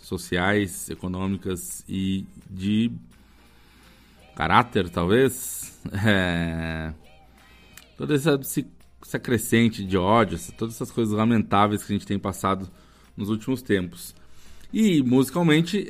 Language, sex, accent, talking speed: Portuguese, male, Brazilian, 100 wpm